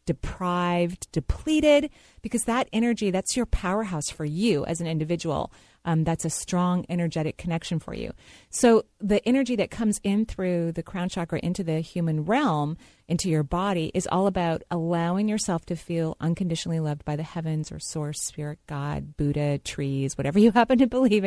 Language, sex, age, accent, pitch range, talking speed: English, female, 30-49, American, 160-210 Hz, 170 wpm